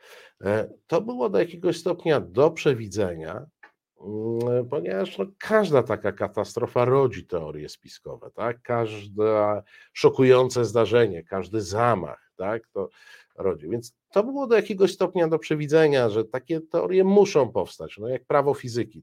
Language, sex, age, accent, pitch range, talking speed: Polish, male, 50-69, native, 100-130 Hz, 130 wpm